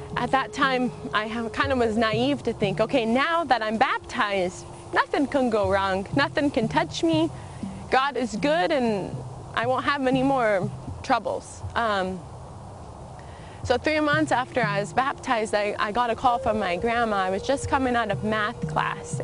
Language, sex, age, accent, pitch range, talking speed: English, female, 20-39, American, 195-295 Hz, 180 wpm